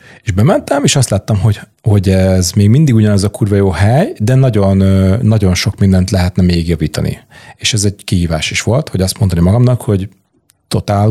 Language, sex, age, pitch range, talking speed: Hungarian, male, 30-49, 90-115 Hz, 190 wpm